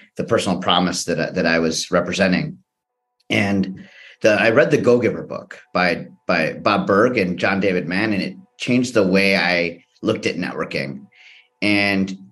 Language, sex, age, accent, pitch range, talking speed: English, male, 30-49, American, 90-125 Hz, 155 wpm